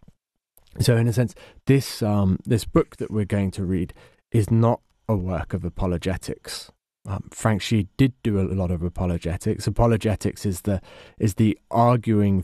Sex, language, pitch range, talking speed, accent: male, English, 90-110 Hz, 165 wpm, British